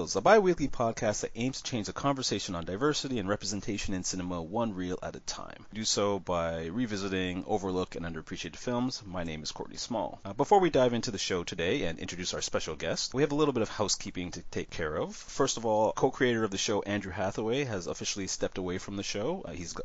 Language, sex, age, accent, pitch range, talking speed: English, male, 30-49, American, 90-110 Hz, 225 wpm